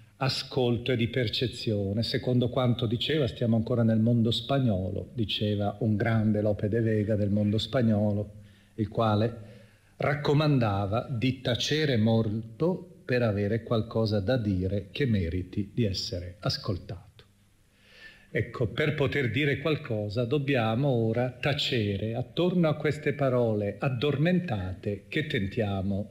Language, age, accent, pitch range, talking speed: Italian, 40-59, native, 110-150 Hz, 120 wpm